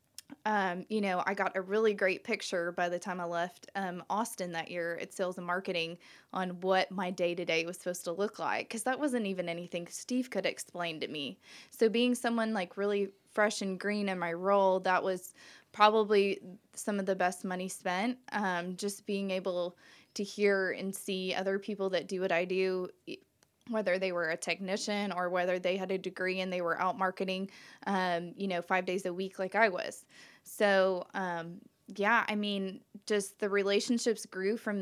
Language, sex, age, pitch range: English, female, 20-39, 185-215 Hz